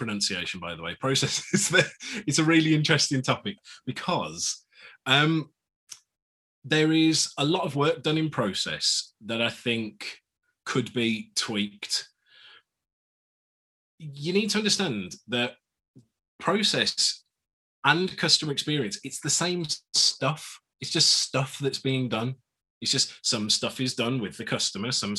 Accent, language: British, English